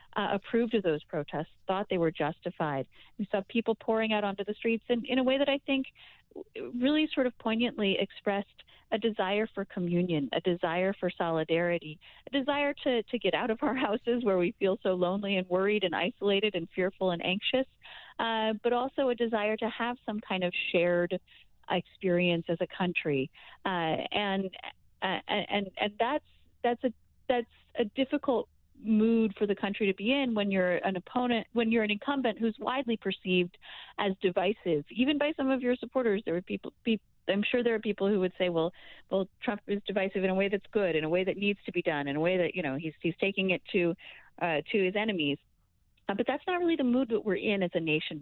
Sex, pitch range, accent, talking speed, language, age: female, 180-235 Hz, American, 210 wpm, English, 40-59